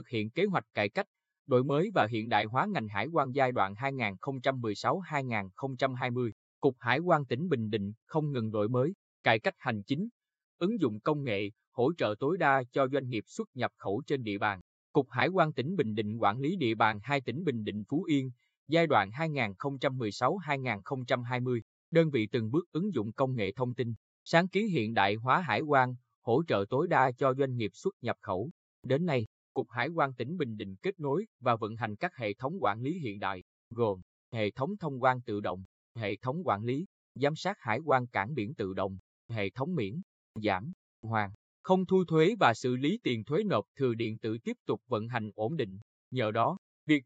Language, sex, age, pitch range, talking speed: Vietnamese, male, 20-39, 110-150 Hz, 205 wpm